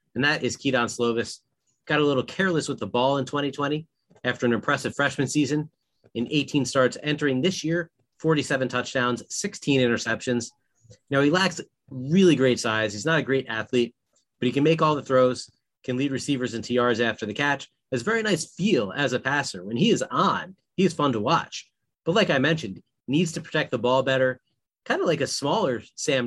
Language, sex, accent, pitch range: English, male, American, 120-145 Hz